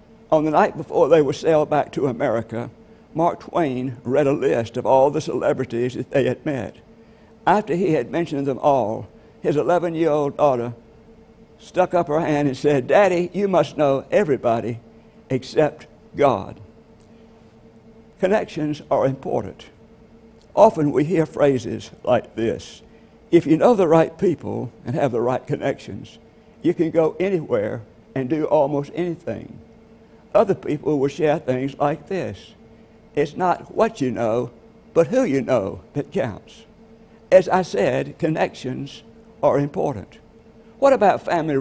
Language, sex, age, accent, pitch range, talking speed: English, male, 60-79, American, 130-165 Hz, 145 wpm